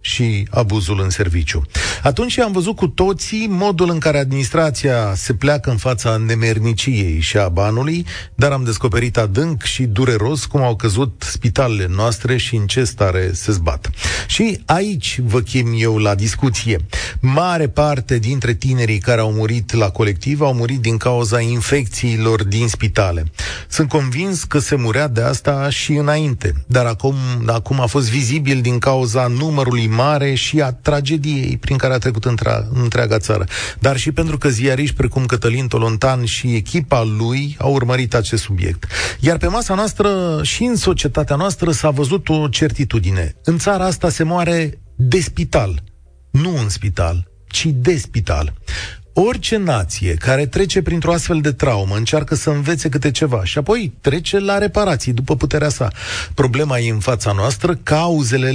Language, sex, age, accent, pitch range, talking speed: Romanian, male, 40-59, native, 110-150 Hz, 160 wpm